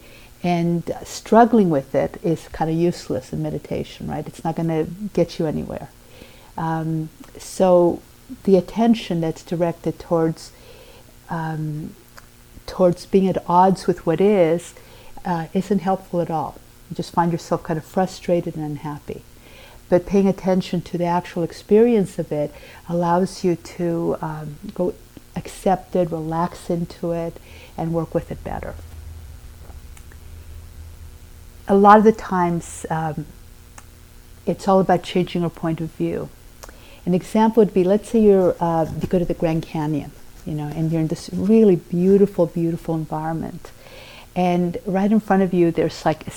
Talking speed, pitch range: 155 wpm, 160-190 Hz